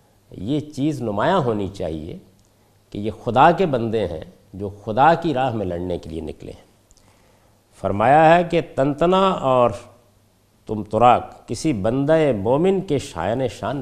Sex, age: male, 50-69